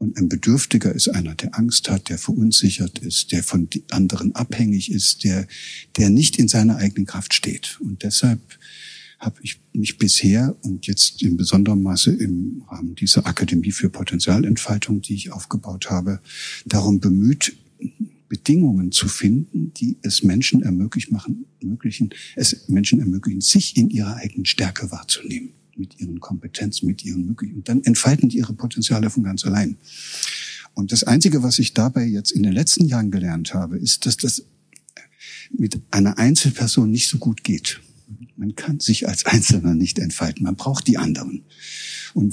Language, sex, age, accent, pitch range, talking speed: German, male, 60-79, German, 100-125 Hz, 160 wpm